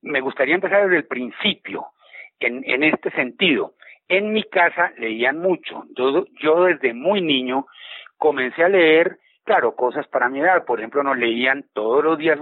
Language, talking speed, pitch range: Spanish, 170 wpm, 140-195 Hz